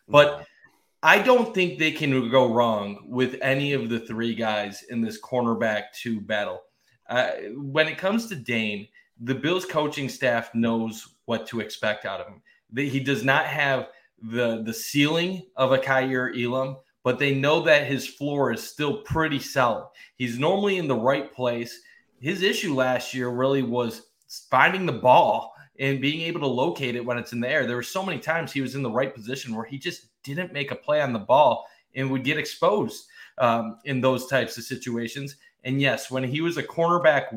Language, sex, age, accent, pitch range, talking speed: English, male, 30-49, American, 120-150 Hz, 195 wpm